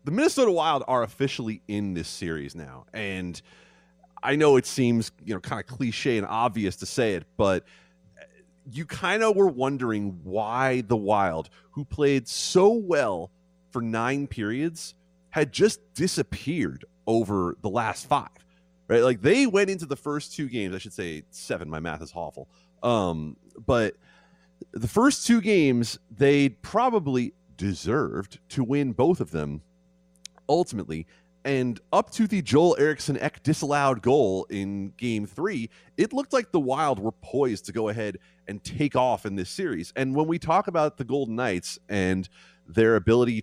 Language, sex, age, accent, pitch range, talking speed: English, male, 30-49, American, 95-155 Hz, 160 wpm